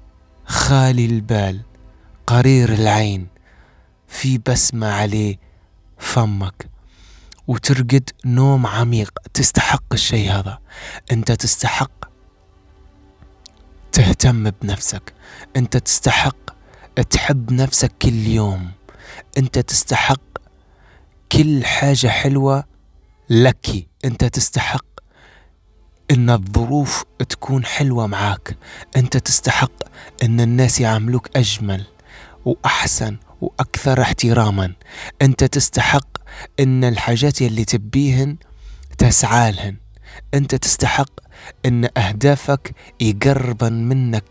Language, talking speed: English, 80 wpm